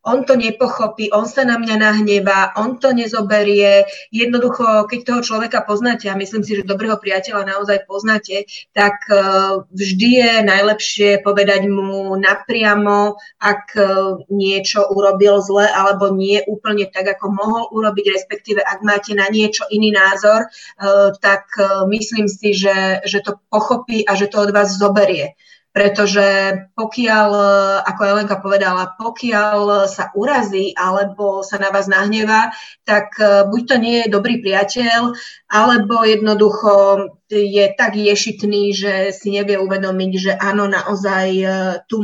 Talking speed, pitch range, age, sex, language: 135 wpm, 195-220 Hz, 20-39, female, Slovak